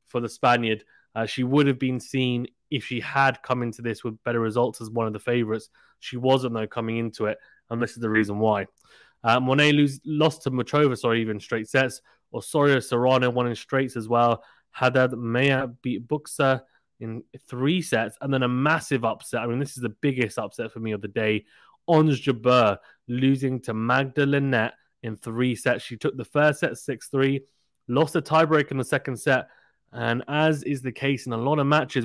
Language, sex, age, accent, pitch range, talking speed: English, male, 20-39, British, 120-145 Hz, 200 wpm